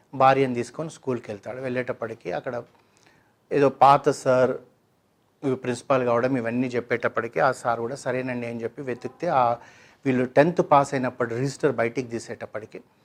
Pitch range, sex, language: 120-135 Hz, male, Telugu